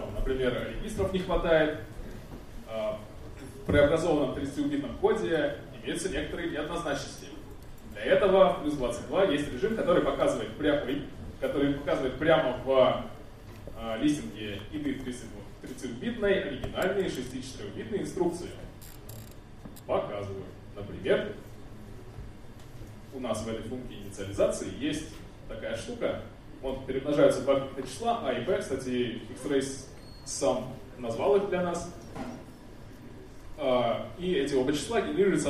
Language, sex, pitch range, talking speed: Russian, male, 110-150 Hz, 105 wpm